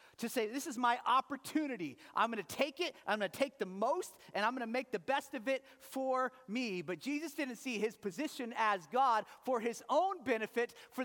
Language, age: English, 40-59